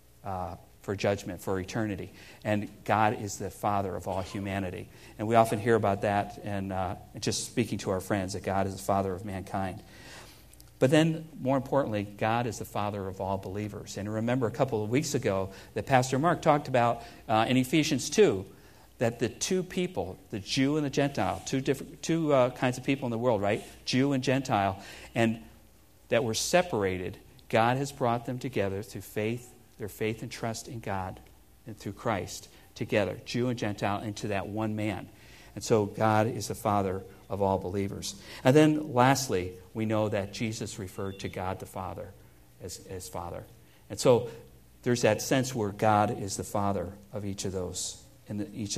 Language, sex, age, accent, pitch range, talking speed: English, male, 50-69, American, 95-120 Hz, 185 wpm